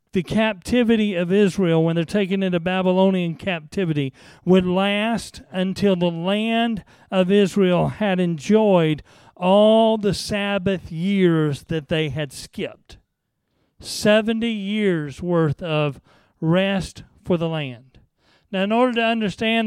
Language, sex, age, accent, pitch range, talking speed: English, male, 40-59, American, 170-210 Hz, 120 wpm